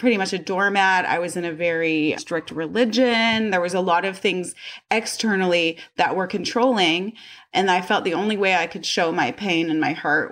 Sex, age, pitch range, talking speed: female, 30-49, 175-225 Hz, 205 wpm